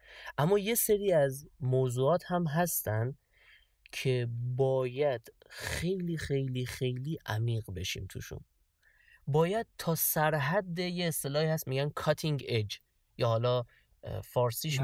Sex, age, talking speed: male, 30-49, 110 wpm